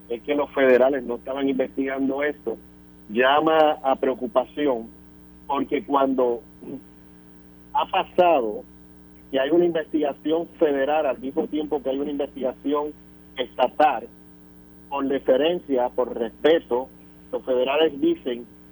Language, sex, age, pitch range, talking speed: Spanish, male, 50-69, 120-160 Hz, 110 wpm